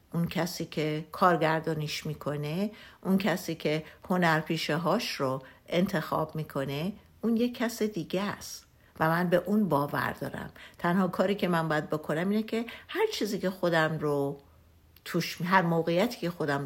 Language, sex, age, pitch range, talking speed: Persian, female, 60-79, 155-195 Hz, 150 wpm